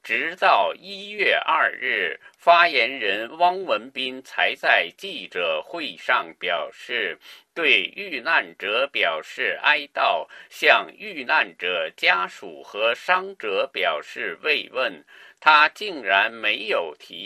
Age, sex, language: 50-69, male, Chinese